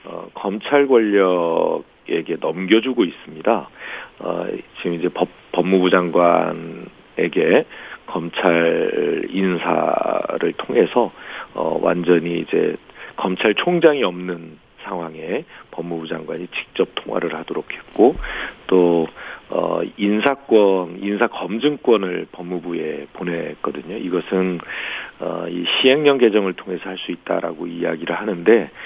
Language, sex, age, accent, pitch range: Korean, male, 40-59, native, 85-105 Hz